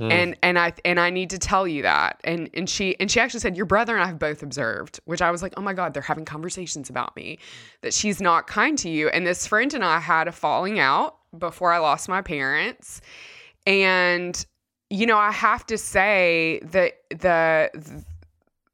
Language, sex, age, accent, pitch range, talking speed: English, female, 20-39, American, 155-190 Hz, 205 wpm